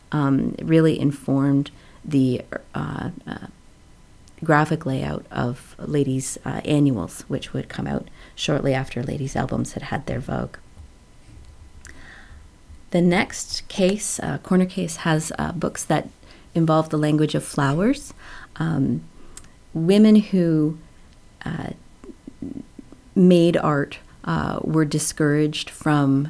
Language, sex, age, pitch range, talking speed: English, female, 40-59, 135-160 Hz, 115 wpm